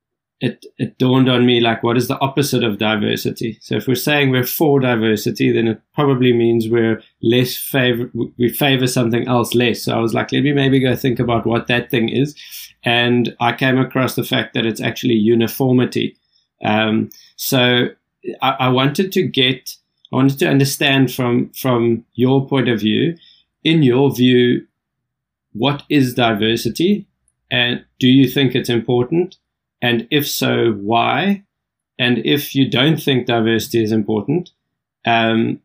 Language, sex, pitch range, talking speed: English, male, 115-135 Hz, 165 wpm